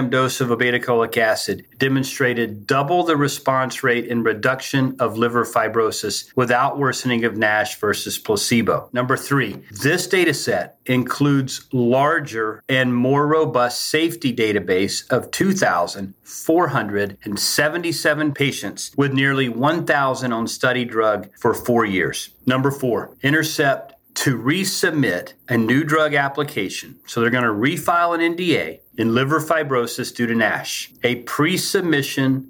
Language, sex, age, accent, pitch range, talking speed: English, male, 40-59, American, 125-150 Hz, 125 wpm